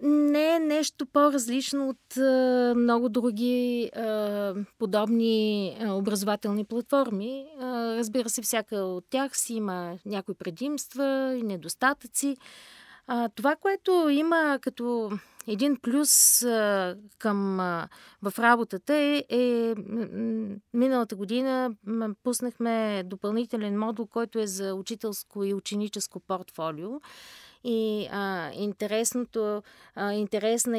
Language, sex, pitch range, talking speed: Bulgarian, female, 195-245 Hz, 90 wpm